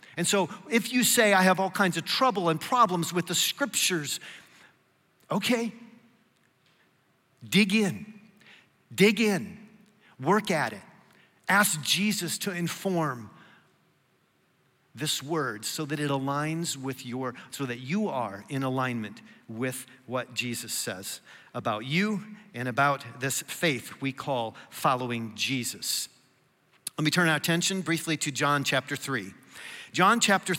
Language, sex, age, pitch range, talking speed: English, male, 50-69, 145-205 Hz, 135 wpm